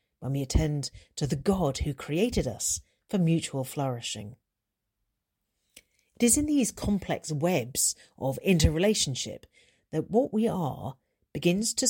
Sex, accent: female, British